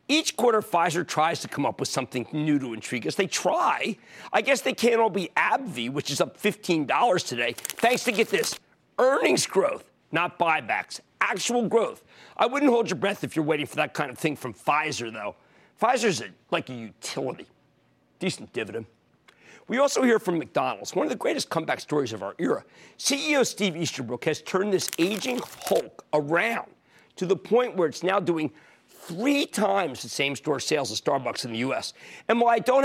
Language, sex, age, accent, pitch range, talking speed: English, male, 50-69, American, 155-230 Hz, 190 wpm